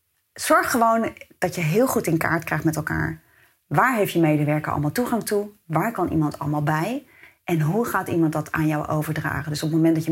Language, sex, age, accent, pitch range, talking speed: Dutch, female, 30-49, Dutch, 155-175 Hz, 220 wpm